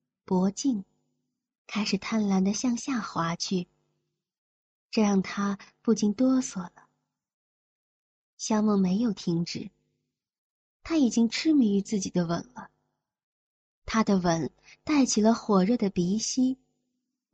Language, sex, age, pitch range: Chinese, female, 30-49, 195-250 Hz